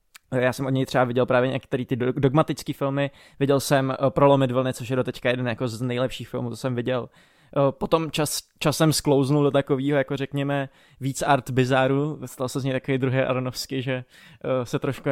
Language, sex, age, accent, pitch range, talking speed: Czech, male, 20-39, native, 130-145 Hz, 185 wpm